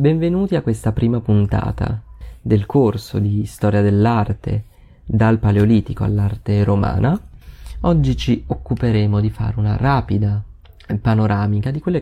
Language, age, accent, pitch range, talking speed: Italian, 30-49, native, 105-130 Hz, 120 wpm